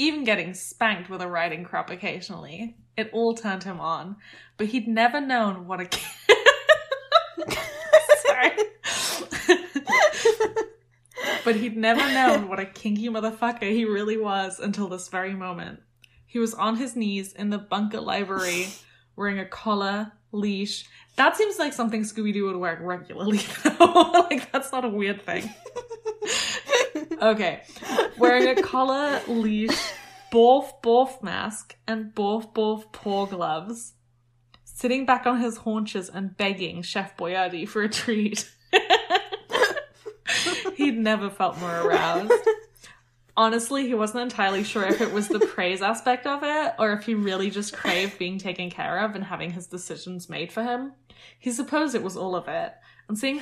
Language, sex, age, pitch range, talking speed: English, female, 20-39, 195-270 Hz, 150 wpm